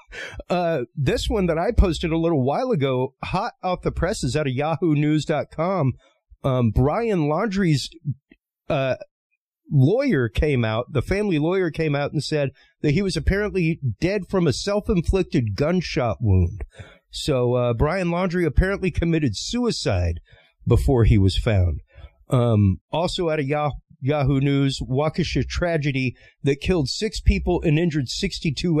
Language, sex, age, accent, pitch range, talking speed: English, male, 40-59, American, 125-175 Hz, 150 wpm